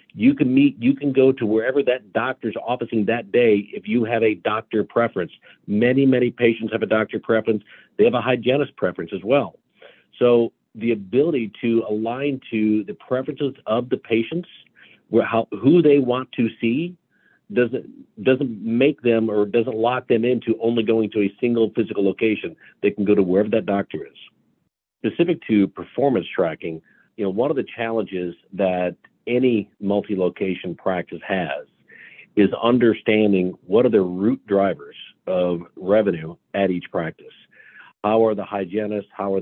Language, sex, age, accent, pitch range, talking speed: English, male, 50-69, American, 100-120 Hz, 165 wpm